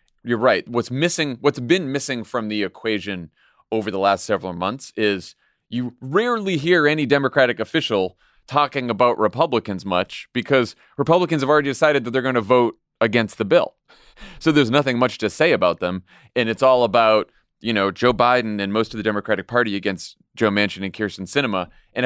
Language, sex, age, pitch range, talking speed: English, male, 30-49, 110-145 Hz, 185 wpm